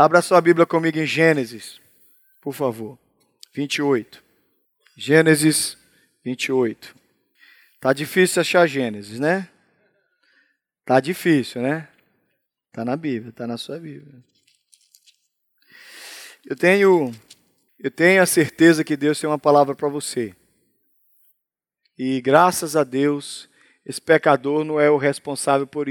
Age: 20-39